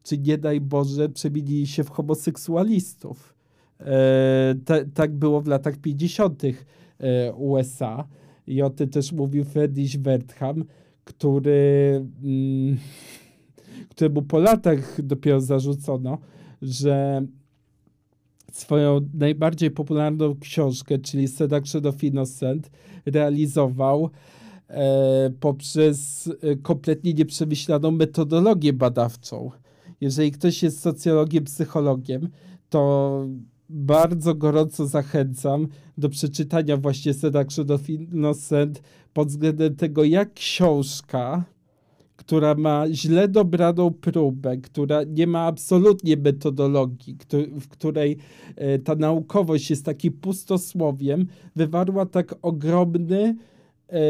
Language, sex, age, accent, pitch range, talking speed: Polish, male, 50-69, native, 140-160 Hz, 100 wpm